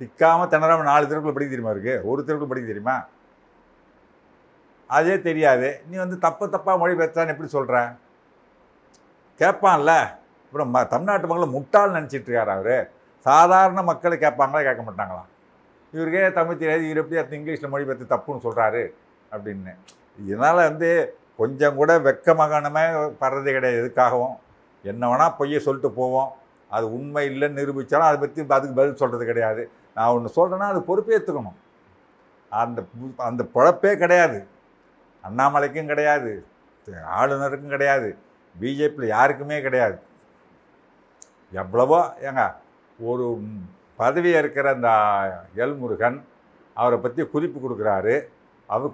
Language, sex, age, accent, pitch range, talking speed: Tamil, male, 50-69, native, 130-165 Hz, 120 wpm